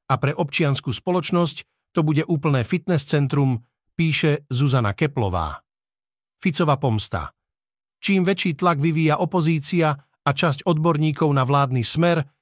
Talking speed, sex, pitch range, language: 120 wpm, male, 135-165 Hz, Slovak